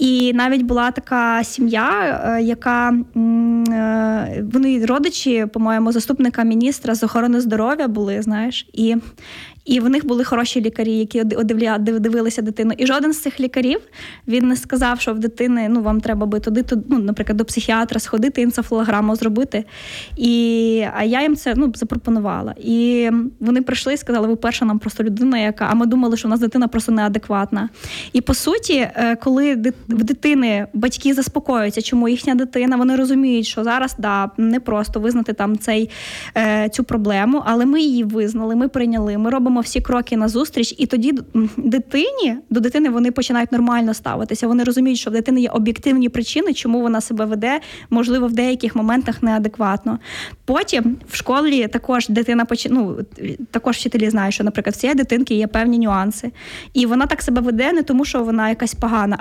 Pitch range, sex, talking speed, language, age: 225-255 Hz, female, 165 wpm, Ukrainian, 20-39